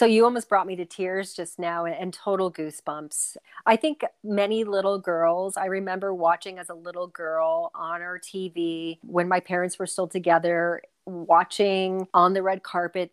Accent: American